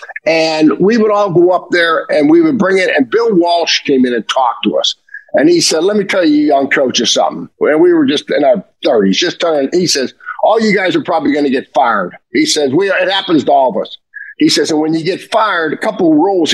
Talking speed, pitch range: 260 wpm, 195-320 Hz